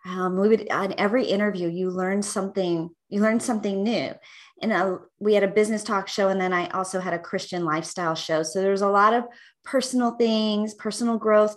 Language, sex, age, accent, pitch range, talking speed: English, female, 30-49, American, 185-220 Hz, 200 wpm